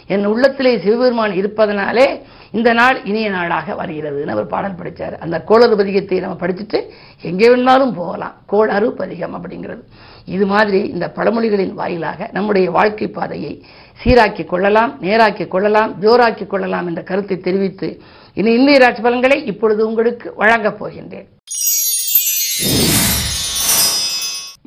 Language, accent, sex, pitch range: Tamil, native, female, 195-235 Hz